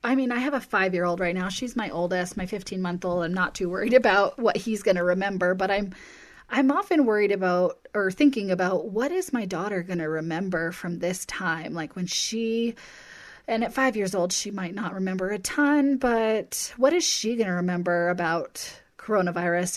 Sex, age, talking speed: female, 30-49, 195 wpm